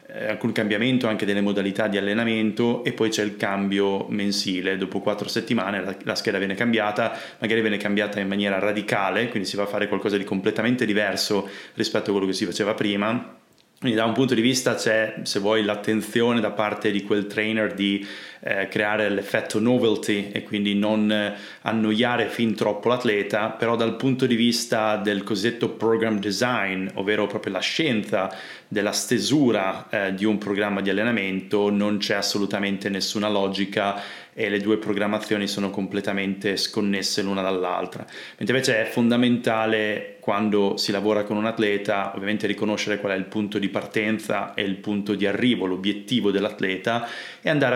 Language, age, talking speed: Italian, 30-49, 165 wpm